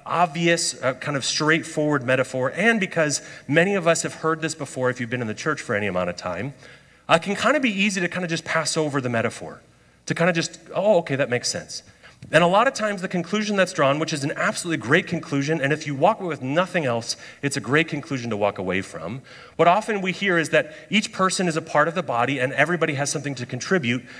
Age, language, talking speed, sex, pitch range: 30-49, English, 250 wpm, male, 135-175 Hz